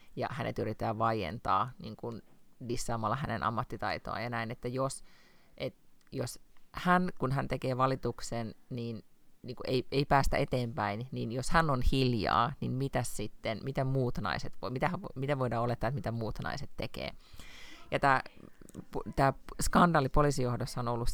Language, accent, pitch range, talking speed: Finnish, native, 115-145 Hz, 145 wpm